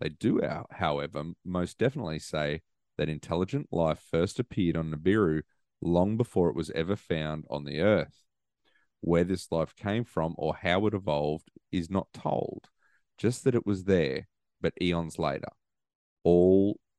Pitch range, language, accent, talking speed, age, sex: 80-100 Hz, English, Australian, 150 wpm, 30-49, male